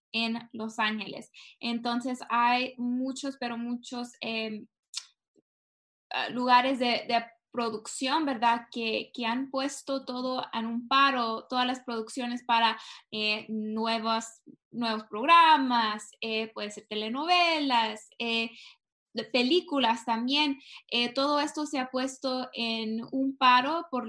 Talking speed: 120 wpm